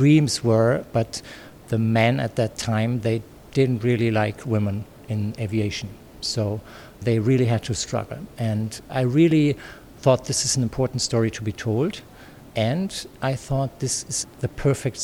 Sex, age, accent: male, 50-69, German